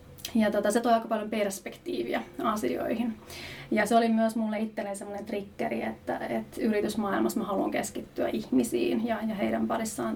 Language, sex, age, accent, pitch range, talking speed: Finnish, female, 30-49, native, 200-225 Hz, 150 wpm